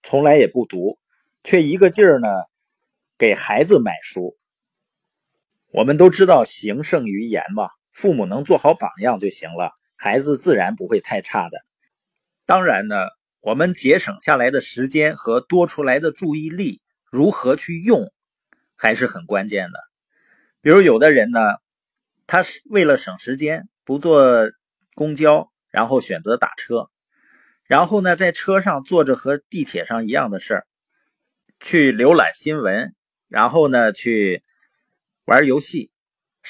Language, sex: Chinese, male